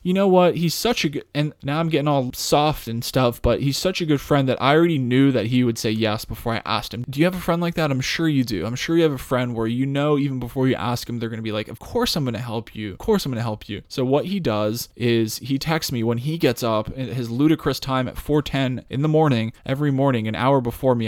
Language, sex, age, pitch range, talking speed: English, male, 20-39, 115-135 Hz, 300 wpm